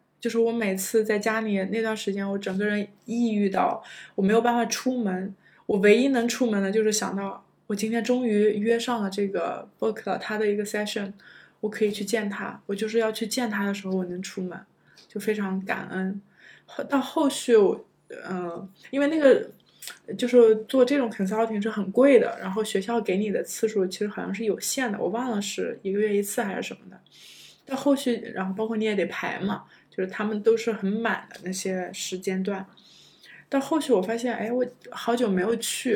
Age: 20-39